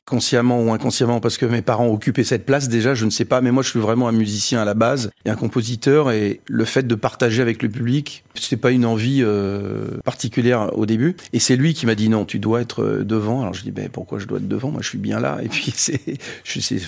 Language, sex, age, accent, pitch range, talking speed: French, male, 40-59, French, 115-135 Hz, 270 wpm